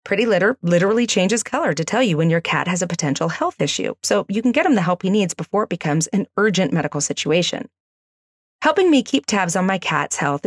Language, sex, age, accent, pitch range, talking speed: English, female, 30-49, American, 160-225 Hz, 230 wpm